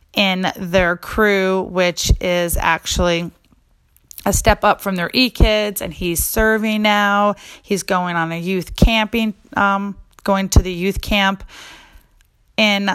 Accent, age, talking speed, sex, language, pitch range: American, 30-49, 135 wpm, female, English, 175-205 Hz